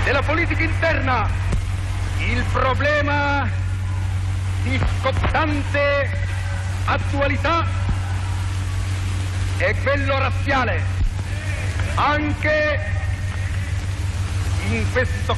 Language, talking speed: Italian, 55 wpm